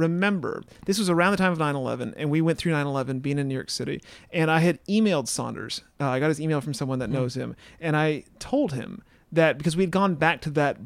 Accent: American